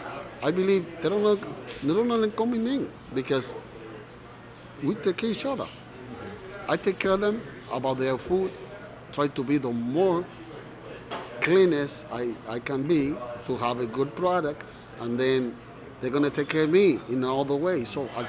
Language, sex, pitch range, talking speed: English, male, 125-165 Hz, 165 wpm